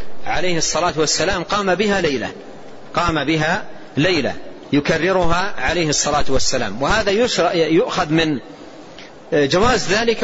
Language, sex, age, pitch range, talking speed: Arabic, male, 40-59, 155-195 Hz, 105 wpm